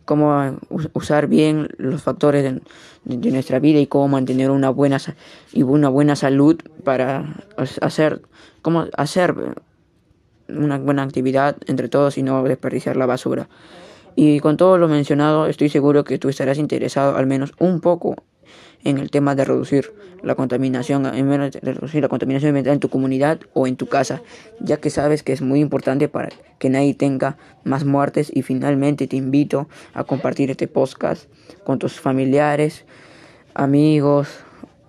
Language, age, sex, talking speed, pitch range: Spanish, 10-29, female, 150 wpm, 135-150 Hz